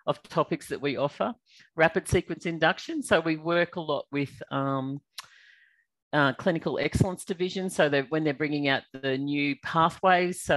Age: 40-59